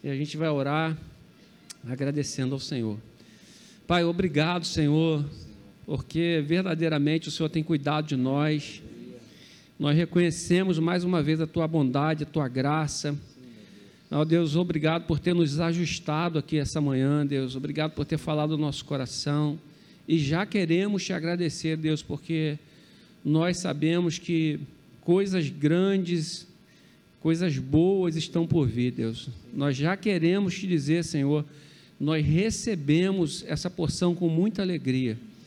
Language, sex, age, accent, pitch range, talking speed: Portuguese, male, 50-69, Brazilian, 145-170 Hz, 130 wpm